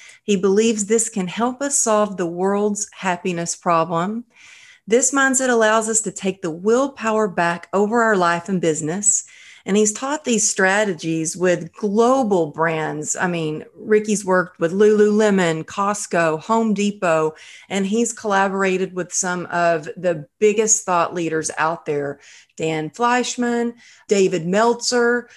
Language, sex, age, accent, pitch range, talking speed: English, female, 40-59, American, 175-230 Hz, 135 wpm